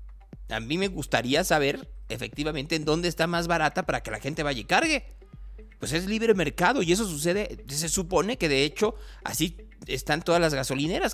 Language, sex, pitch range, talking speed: Spanish, male, 140-185 Hz, 190 wpm